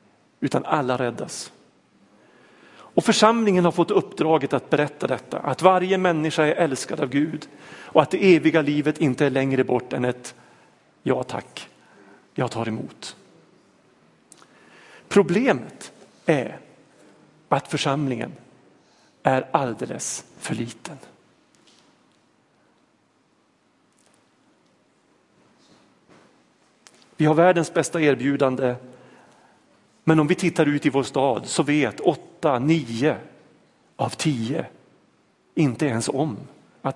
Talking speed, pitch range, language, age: 105 wpm, 140-175 Hz, Swedish, 40-59